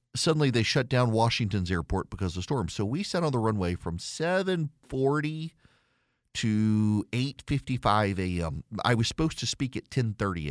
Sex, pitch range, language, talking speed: male, 100-130 Hz, English, 160 wpm